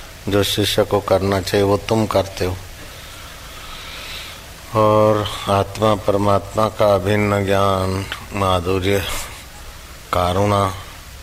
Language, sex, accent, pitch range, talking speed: Hindi, male, native, 90-105 Hz, 90 wpm